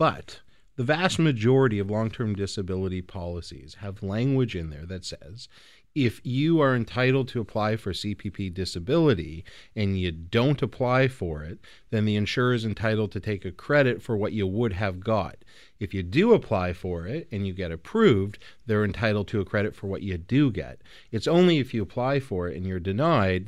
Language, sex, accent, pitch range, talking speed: English, male, American, 95-120 Hz, 190 wpm